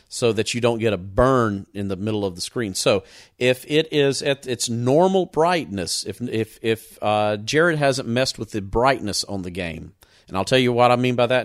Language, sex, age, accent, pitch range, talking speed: English, male, 40-59, American, 110-140 Hz, 225 wpm